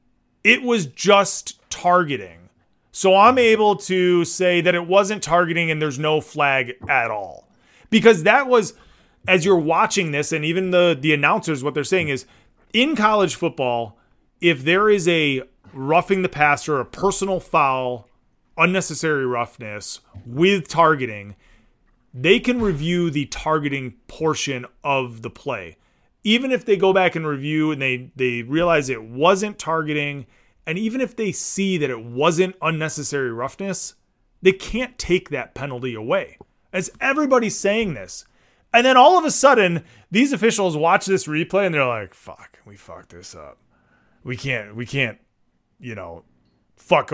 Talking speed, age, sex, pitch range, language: 155 wpm, 30-49, male, 130-195 Hz, English